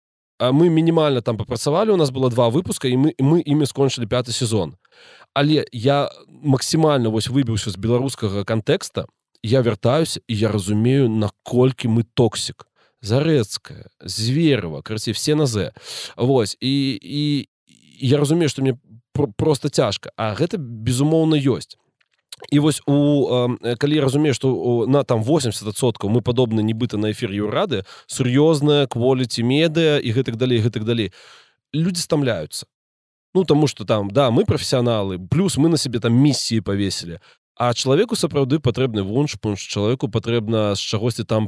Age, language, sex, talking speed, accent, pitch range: 20-39, Russian, male, 150 wpm, native, 110-140 Hz